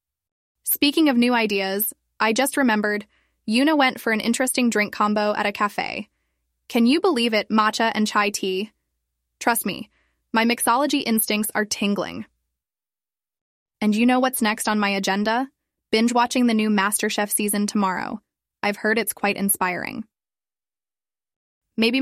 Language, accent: English, American